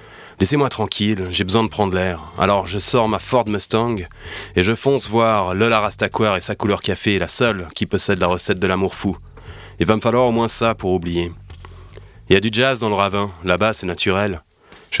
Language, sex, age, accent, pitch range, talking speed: French, male, 30-49, French, 95-110 Hz, 210 wpm